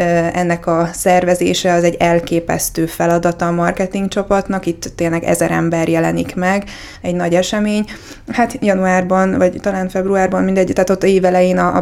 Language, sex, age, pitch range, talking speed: Hungarian, female, 20-39, 175-195 Hz, 150 wpm